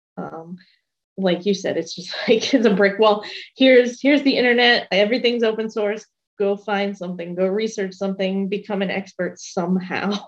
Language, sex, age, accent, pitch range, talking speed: English, female, 20-39, American, 180-215 Hz, 165 wpm